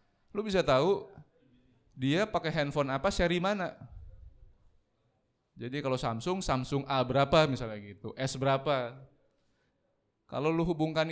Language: Indonesian